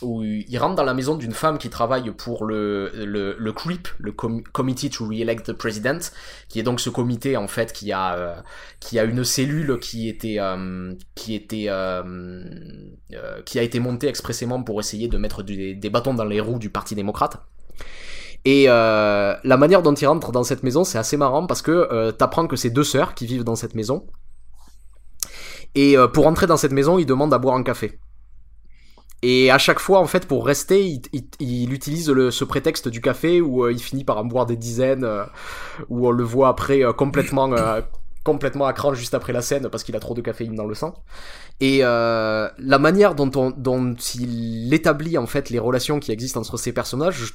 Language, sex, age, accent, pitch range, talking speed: French, male, 20-39, French, 115-140 Hz, 215 wpm